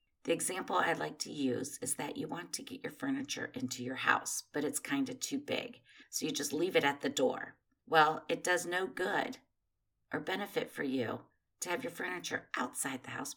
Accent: American